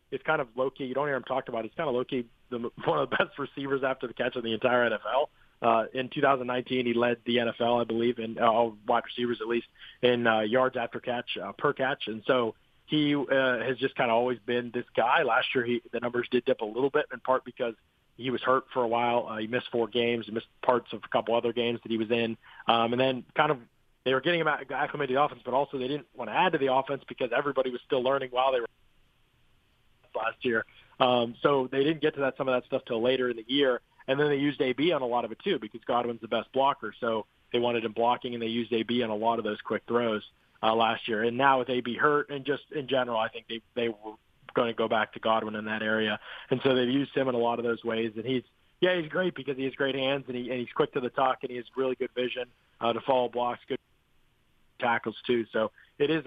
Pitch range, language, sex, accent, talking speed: 115-130 Hz, English, male, American, 265 wpm